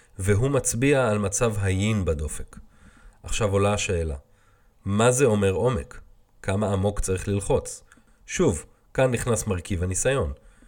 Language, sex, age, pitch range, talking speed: Hebrew, male, 30-49, 95-120 Hz, 125 wpm